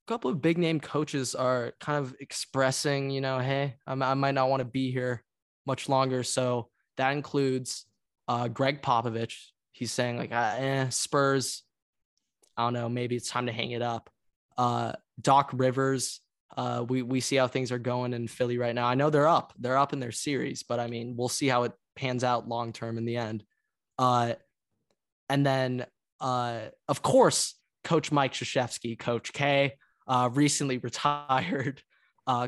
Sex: male